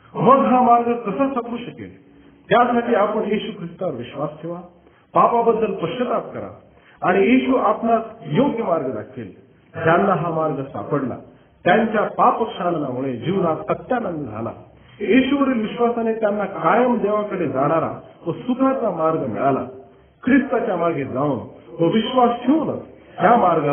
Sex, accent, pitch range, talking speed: male, native, 160-235 Hz, 90 wpm